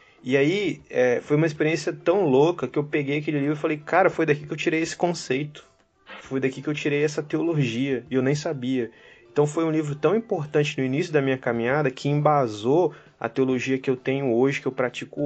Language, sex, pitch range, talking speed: Portuguese, male, 120-150 Hz, 215 wpm